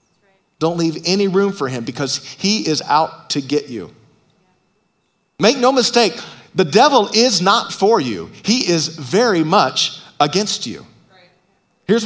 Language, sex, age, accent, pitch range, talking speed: English, male, 40-59, American, 145-195 Hz, 145 wpm